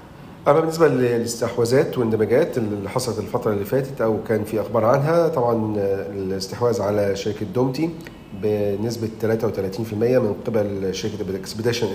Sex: male